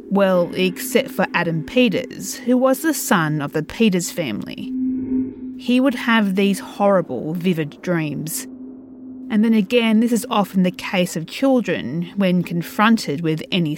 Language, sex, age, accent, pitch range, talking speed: English, female, 40-59, Australian, 175-260 Hz, 150 wpm